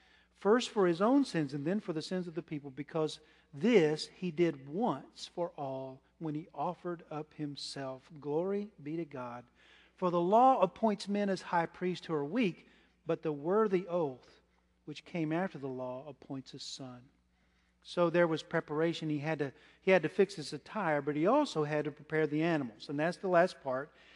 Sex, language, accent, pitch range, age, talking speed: male, English, American, 140-175 Hz, 40-59, 190 wpm